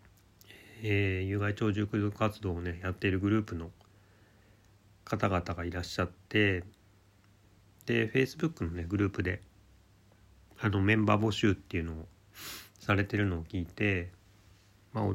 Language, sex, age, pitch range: Japanese, male, 30-49, 95-105 Hz